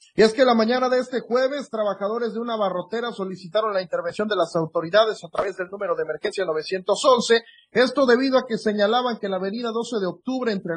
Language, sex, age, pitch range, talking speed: Spanish, male, 40-59, 195-240 Hz, 205 wpm